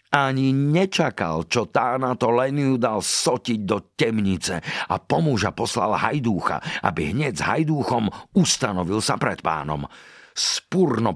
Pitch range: 95-145 Hz